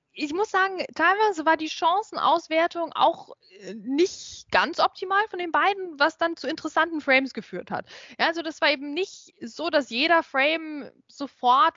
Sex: female